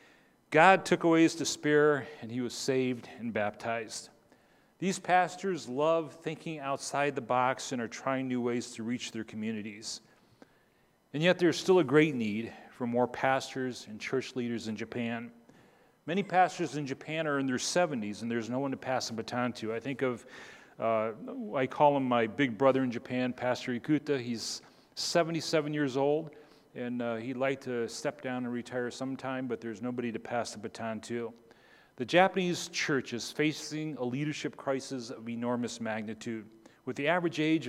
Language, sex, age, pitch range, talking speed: English, male, 40-59, 115-150 Hz, 175 wpm